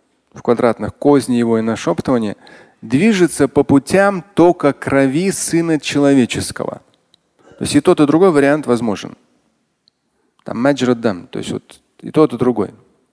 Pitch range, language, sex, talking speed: 120-160 Hz, Russian, male, 135 wpm